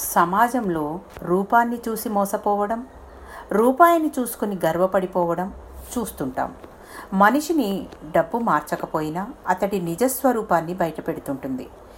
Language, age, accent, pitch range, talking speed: Telugu, 50-69, native, 160-235 Hz, 70 wpm